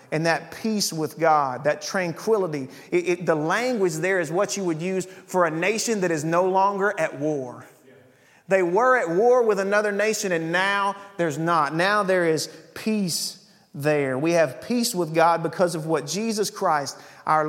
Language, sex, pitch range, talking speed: English, male, 150-195 Hz, 175 wpm